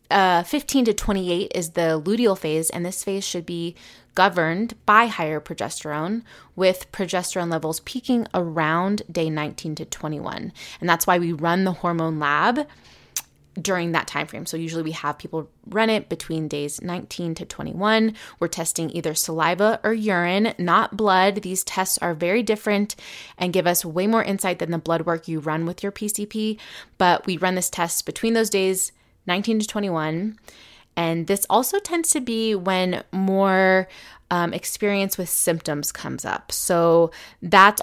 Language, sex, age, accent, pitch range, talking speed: English, female, 20-39, American, 165-205 Hz, 165 wpm